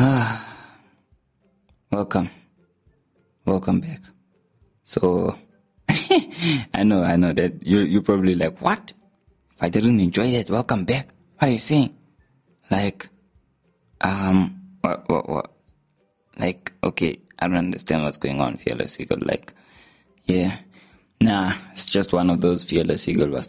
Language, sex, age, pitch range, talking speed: English, male, 20-39, 90-135 Hz, 135 wpm